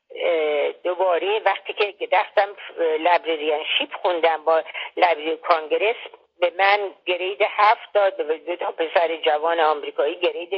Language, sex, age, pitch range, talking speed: Persian, female, 50-69, 165-230 Hz, 125 wpm